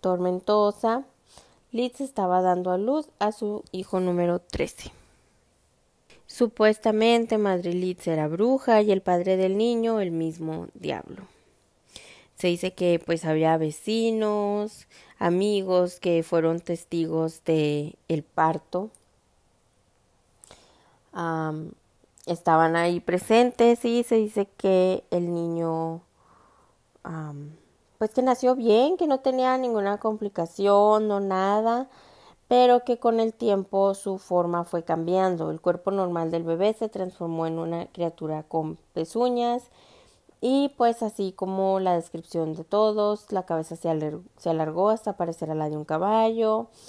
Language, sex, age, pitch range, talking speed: Spanish, female, 20-39, 165-215 Hz, 130 wpm